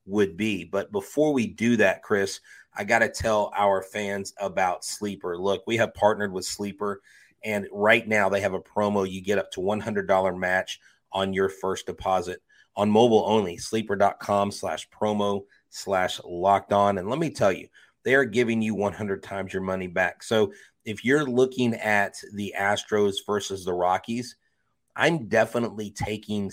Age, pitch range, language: 30-49, 100-115 Hz, English